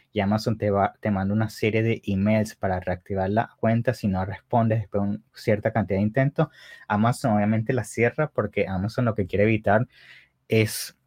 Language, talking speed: English, 190 wpm